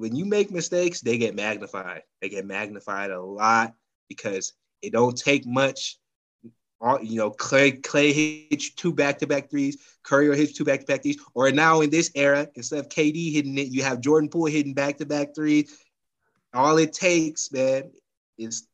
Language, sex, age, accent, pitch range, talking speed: English, male, 20-39, American, 115-160 Hz, 170 wpm